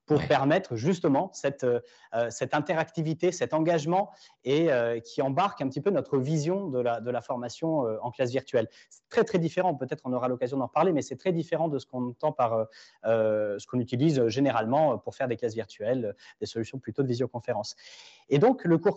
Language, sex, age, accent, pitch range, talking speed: French, male, 30-49, French, 120-165 Hz, 195 wpm